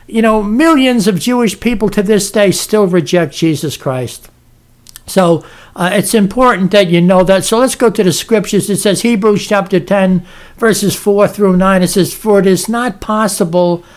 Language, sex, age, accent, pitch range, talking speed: English, male, 60-79, American, 175-210 Hz, 185 wpm